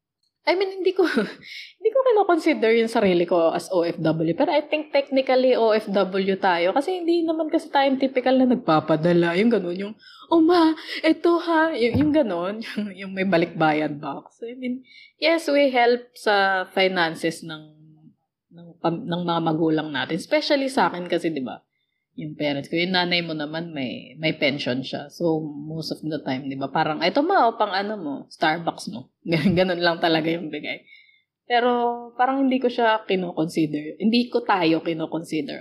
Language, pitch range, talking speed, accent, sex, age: Filipino, 165-255 Hz, 175 wpm, native, female, 20-39